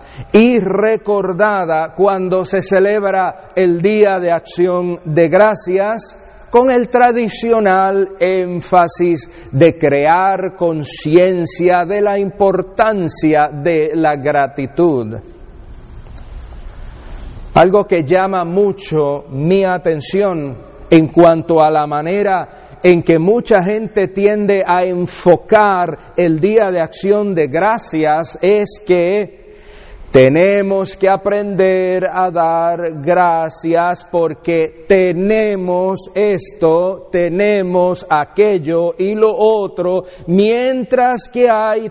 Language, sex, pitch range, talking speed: English, male, 165-200 Hz, 95 wpm